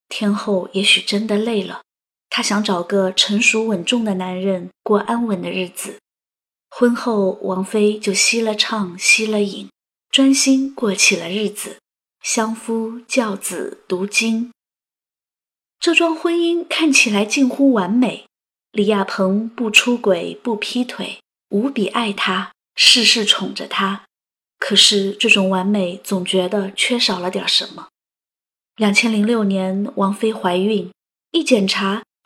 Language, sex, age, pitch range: Chinese, female, 20-39, 195-255 Hz